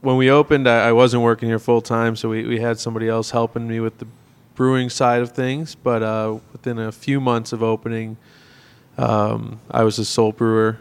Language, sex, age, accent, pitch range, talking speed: English, male, 20-39, American, 110-120 Hz, 205 wpm